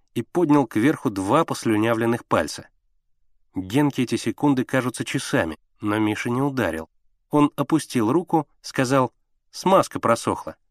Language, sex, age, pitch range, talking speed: Russian, male, 30-49, 105-140 Hz, 120 wpm